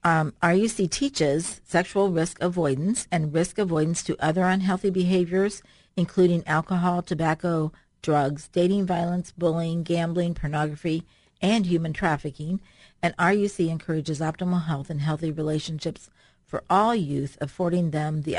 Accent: American